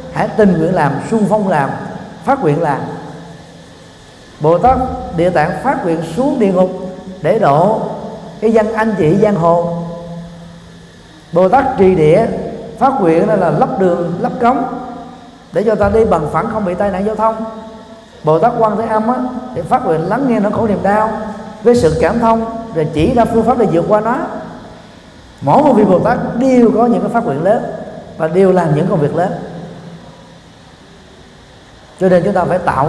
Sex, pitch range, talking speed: male, 170-225 Hz, 190 wpm